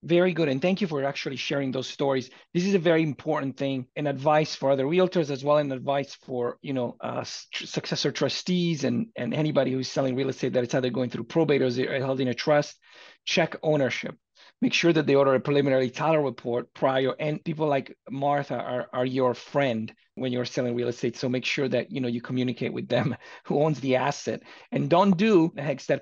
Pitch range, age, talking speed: 130-160 Hz, 40-59, 210 wpm